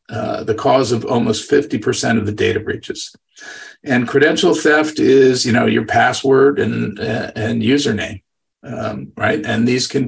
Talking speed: 160 wpm